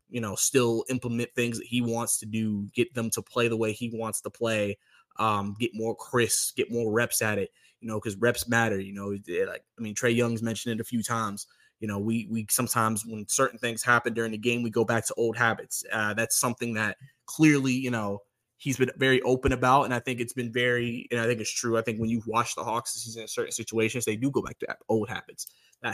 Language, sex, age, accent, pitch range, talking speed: English, male, 20-39, American, 110-125 Hz, 245 wpm